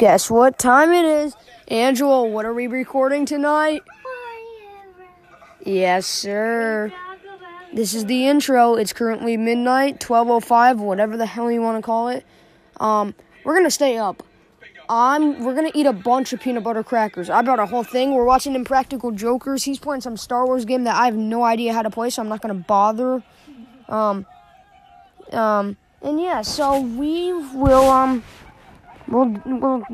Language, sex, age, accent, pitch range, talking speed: English, female, 20-39, American, 225-265 Hz, 170 wpm